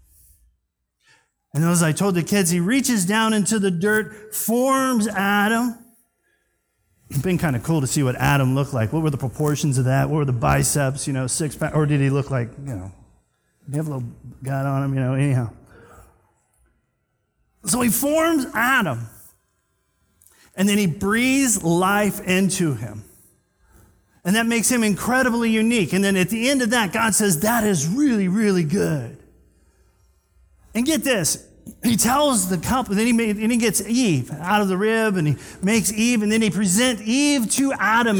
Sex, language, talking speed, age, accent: male, English, 175 wpm, 40-59, American